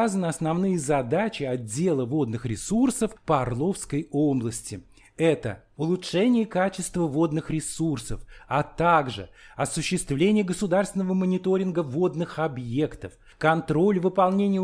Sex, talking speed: male, 90 wpm